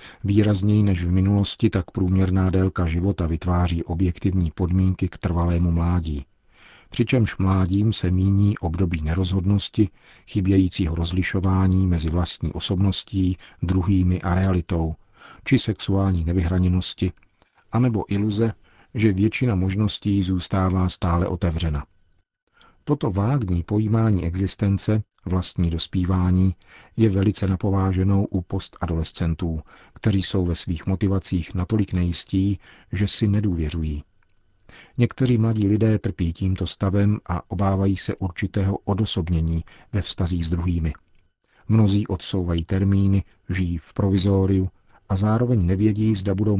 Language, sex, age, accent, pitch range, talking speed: Czech, male, 50-69, native, 90-100 Hz, 110 wpm